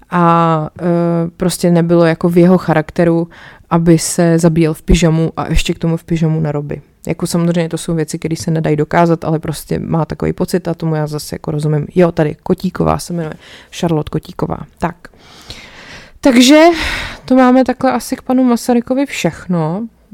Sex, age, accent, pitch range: female, 20-39, native, 160-190 Hz